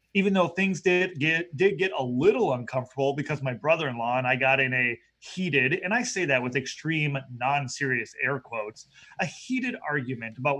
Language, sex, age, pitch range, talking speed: English, male, 30-49, 140-175 Hz, 180 wpm